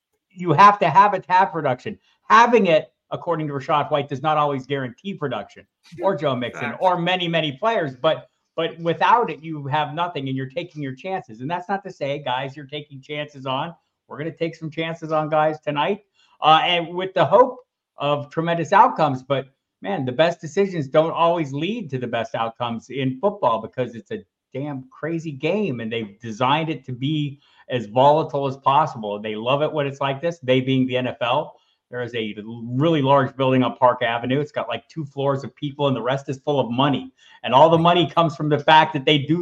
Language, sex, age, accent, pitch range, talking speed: English, male, 50-69, American, 135-170 Hz, 215 wpm